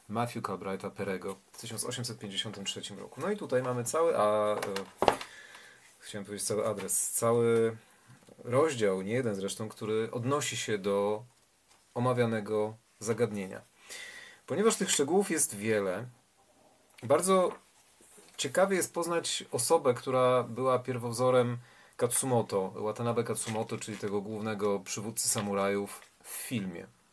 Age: 40-59